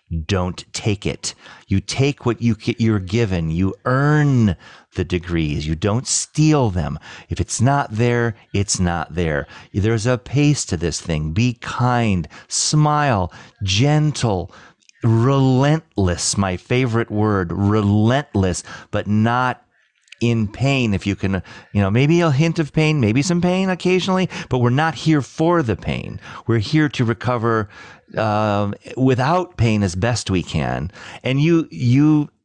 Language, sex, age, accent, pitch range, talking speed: English, male, 40-59, American, 100-140 Hz, 140 wpm